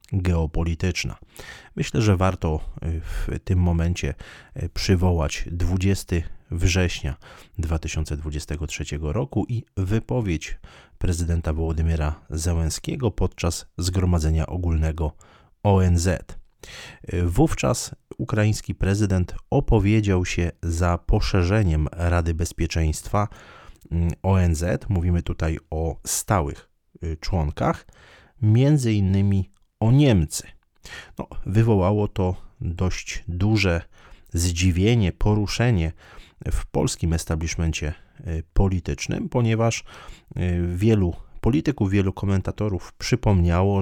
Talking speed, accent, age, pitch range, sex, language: 80 wpm, native, 30-49, 85-100 Hz, male, Polish